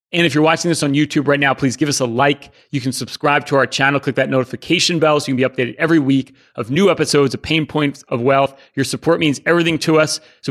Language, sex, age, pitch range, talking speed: English, male, 30-49, 130-160 Hz, 265 wpm